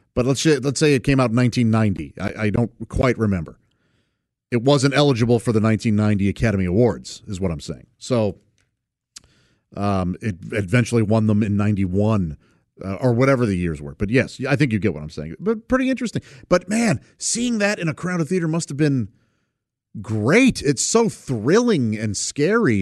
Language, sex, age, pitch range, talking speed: English, male, 40-59, 110-170 Hz, 175 wpm